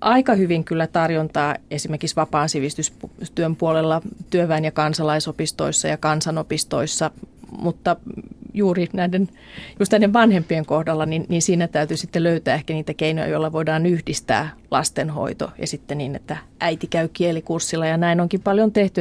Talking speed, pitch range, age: 140 wpm, 160-180 Hz, 30-49